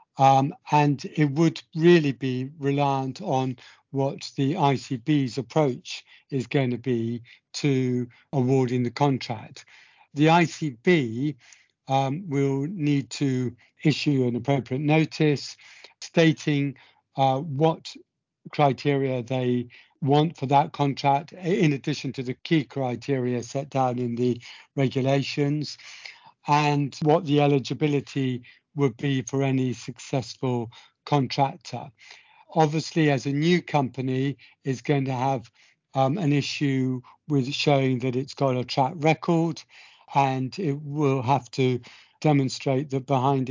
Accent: British